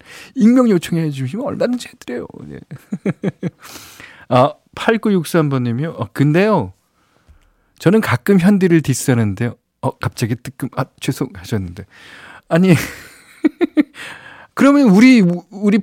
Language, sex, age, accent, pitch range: Korean, male, 40-59, native, 110-165 Hz